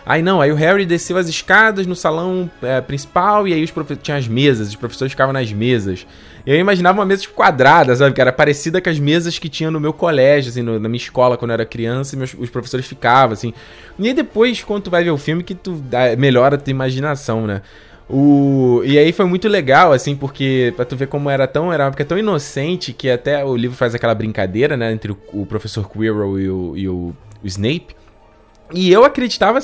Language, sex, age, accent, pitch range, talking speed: Portuguese, male, 20-39, Brazilian, 125-175 Hz, 235 wpm